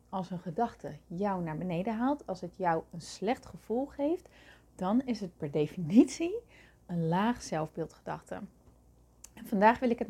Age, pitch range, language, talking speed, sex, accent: 30-49, 175-220 Hz, Dutch, 160 wpm, female, Dutch